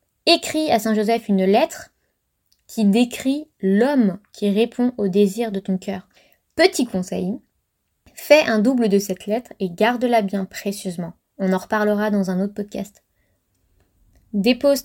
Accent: French